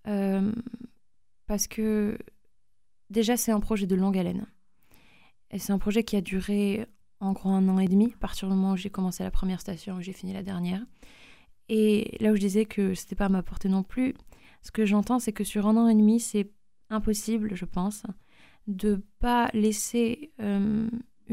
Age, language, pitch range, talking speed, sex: 20-39, French, 195-225 Hz, 195 wpm, female